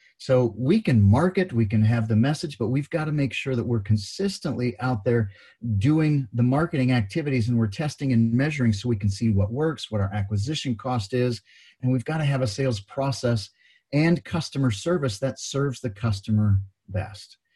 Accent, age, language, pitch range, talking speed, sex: American, 40-59, English, 105-135 Hz, 185 wpm, male